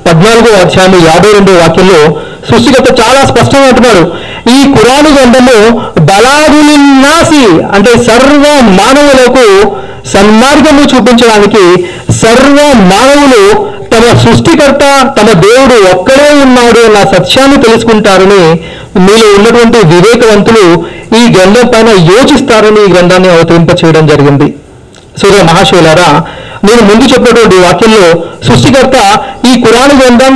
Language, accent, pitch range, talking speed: Telugu, native, 195-260 Hz, 85 wpm